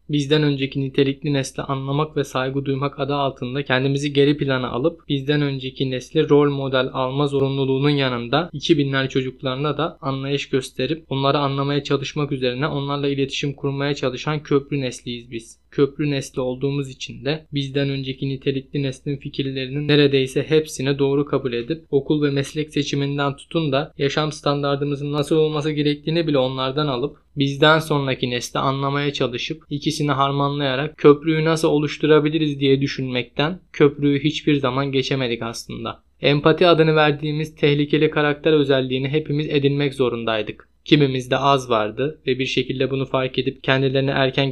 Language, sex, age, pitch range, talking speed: Turkish, male, 20-39, 135-150 Hz, 140 wpm